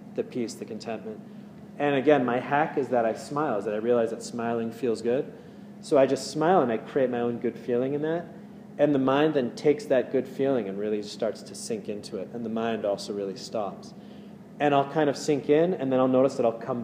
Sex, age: male, 30-49